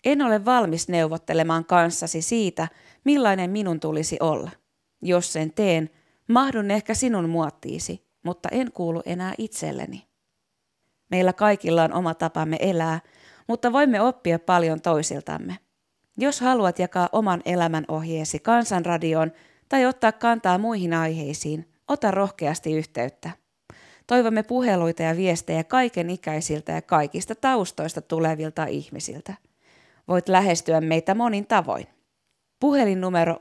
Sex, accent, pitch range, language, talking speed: female, native, 160-210 Hz, Finnish, 115 wpm